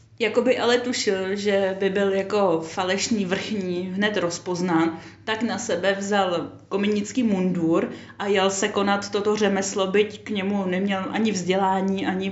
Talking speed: 145 wpm